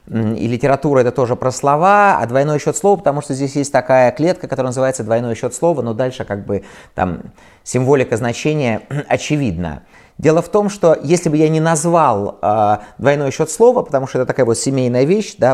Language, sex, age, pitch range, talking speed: Russian, male, 30-49, 120-160 Hz, 195 wpm